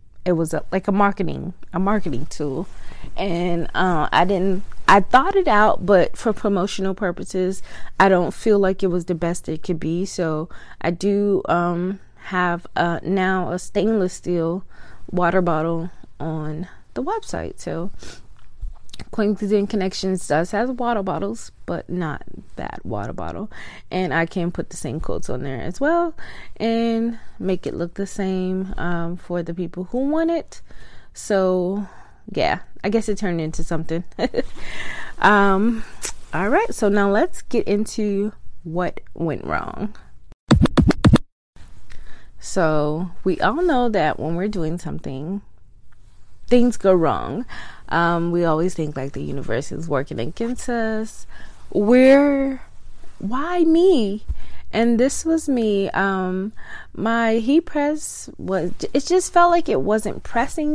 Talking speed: 140 wpm